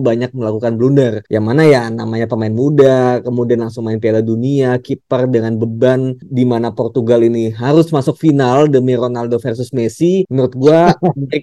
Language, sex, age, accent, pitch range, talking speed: Indonesian, male, 20-39, native, 120-155 Hz, 150 wpm